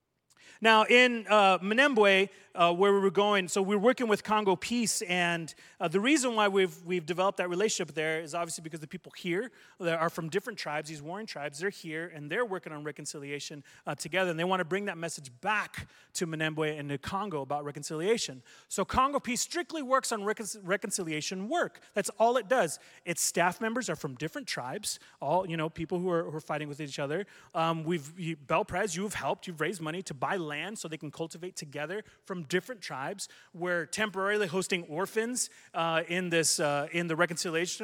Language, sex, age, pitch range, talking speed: English, male, 30-49, 155-195 Hz, 205 wpm